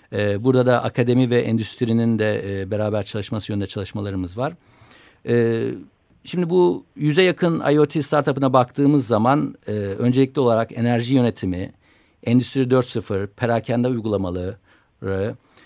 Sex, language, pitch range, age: male, Turkish, 110-135 Hz, 50-69